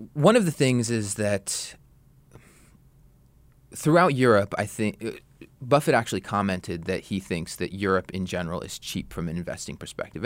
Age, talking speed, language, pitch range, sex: 20-39, 150 wpm, English, 95-120 Hz, male